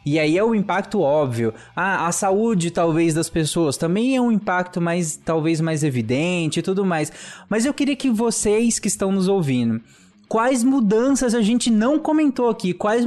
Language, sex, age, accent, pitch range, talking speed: Portuguese, male, 20-39, Brazilian, 155-220 Hz, 190 wpm